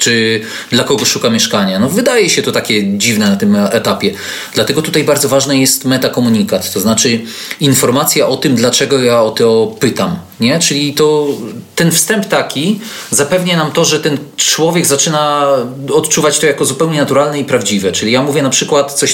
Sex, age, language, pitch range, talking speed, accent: male, 30-49, Polish, 130-160 Hz, 175 wpm, native